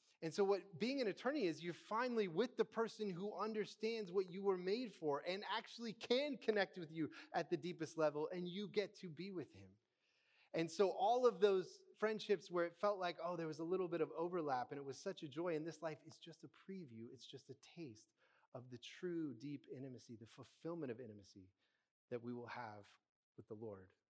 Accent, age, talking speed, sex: American, 30-49, 215 wpm, male